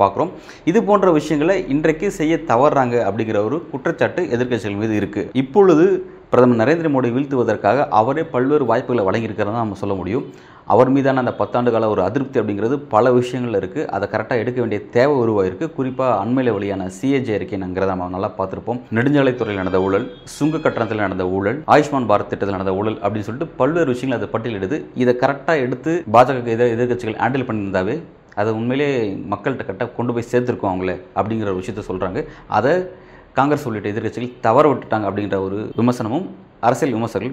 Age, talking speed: 30-49, 40 wpm